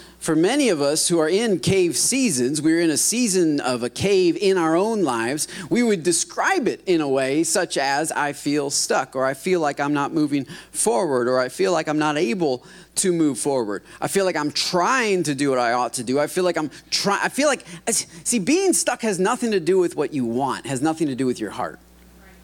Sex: male